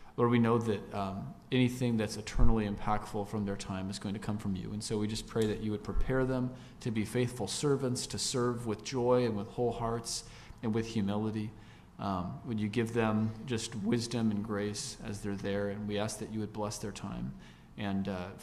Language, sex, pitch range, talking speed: English, male, 105-115 Hz, 215 wpm